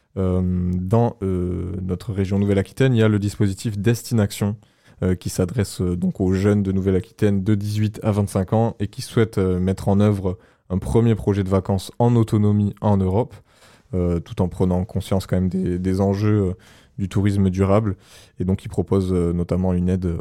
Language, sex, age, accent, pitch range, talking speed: French, male, 20-39, French, 95-105 Hz, 185 wpm